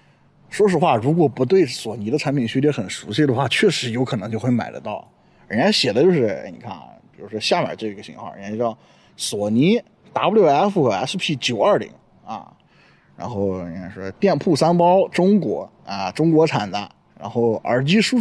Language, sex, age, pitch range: Chinese, male, 20-39, 110-160 Hz